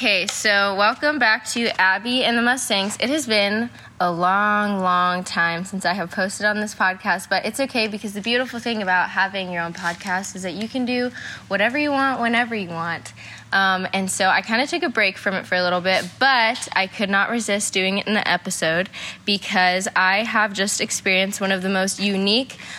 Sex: female